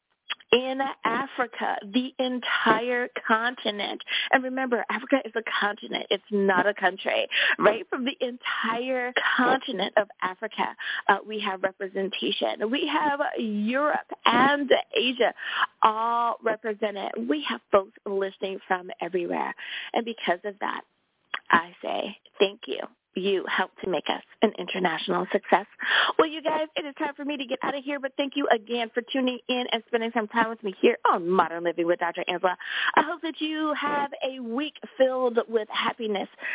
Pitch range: 205-275 Hz